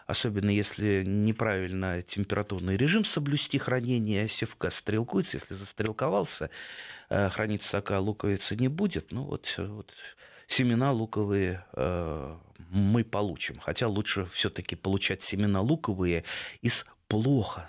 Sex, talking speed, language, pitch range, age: male, 110 wpm, Russian, 90-115 Hz, 30-49